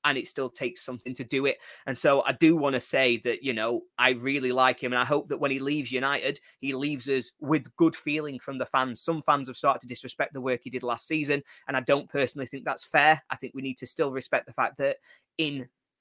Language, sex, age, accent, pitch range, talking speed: English, male, 20-39, British, 125-145 Hz, 260 wpm